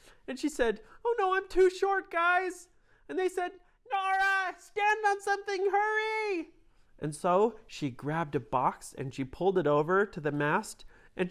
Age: 30-49